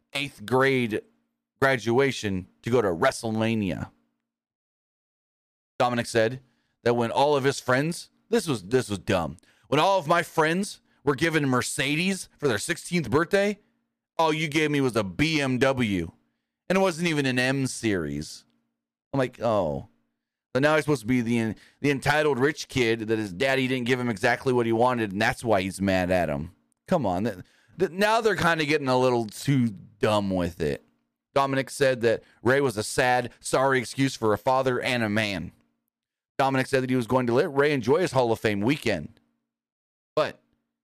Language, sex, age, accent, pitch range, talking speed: English, male, 30-49, American, 110-145 Hz, 180 wpm